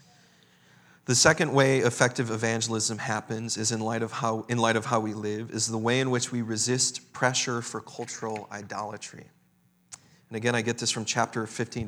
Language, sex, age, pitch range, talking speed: English, male, 40-59, 110-135 Hz, 165 wpm